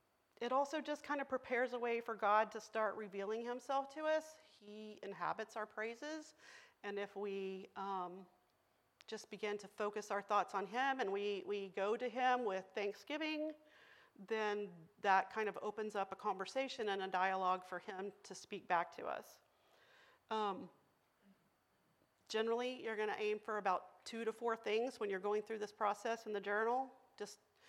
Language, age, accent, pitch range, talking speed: English, 40-59, American, 195-235 Hz, 175 wpm